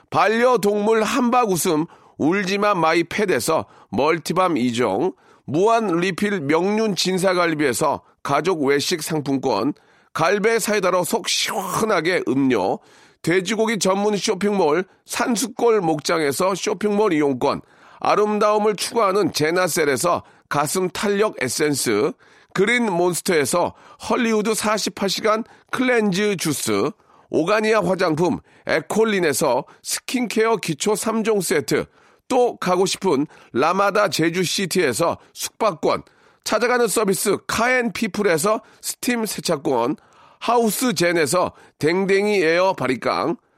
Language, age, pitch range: Korean, 40-59, 175-225 Hz